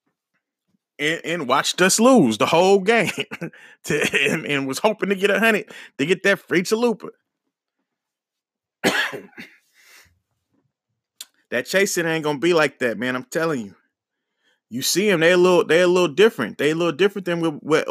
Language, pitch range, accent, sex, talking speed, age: English, 150-220 Hz, American, male, 170 wpm, 30-49